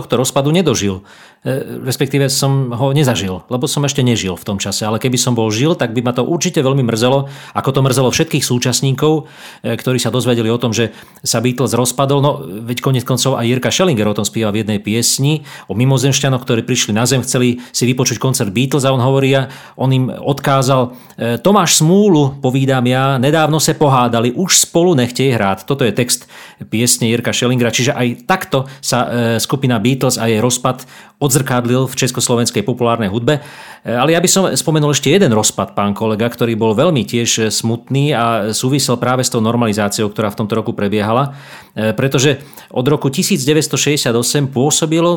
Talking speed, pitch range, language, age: 180 wpm, 120-140 Hz, Slovak, 40-59